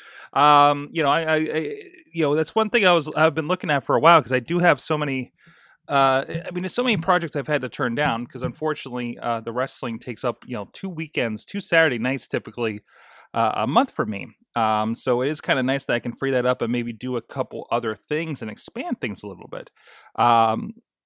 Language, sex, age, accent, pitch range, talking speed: English, male, 30-49, American, 120-165 Hz, 240 wpm